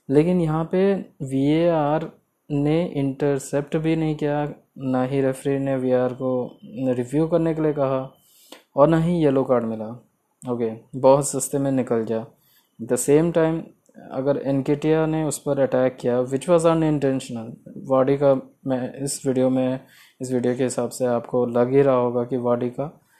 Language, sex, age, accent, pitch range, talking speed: Hindi, male, 20-39, native, 125-145 Hz, 170 wpm